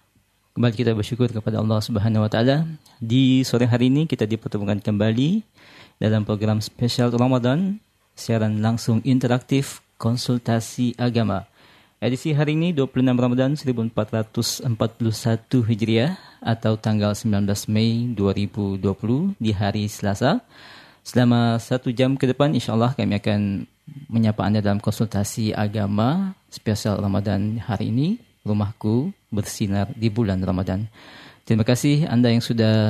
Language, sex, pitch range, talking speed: Indonesian, male, 105-130 Hz, 120 wpm